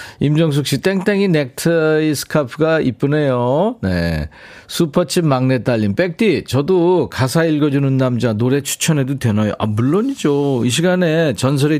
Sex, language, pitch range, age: male, Korean, 110-155 Hz, 40-59